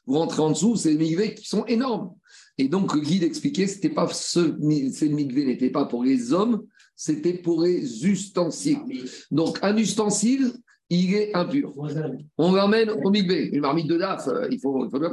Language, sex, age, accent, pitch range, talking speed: French, male, 50-69, French, 170-225 Hz, 190 wpm